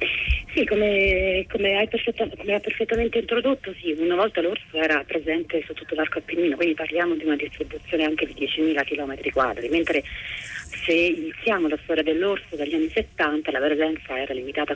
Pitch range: 145-190 Hz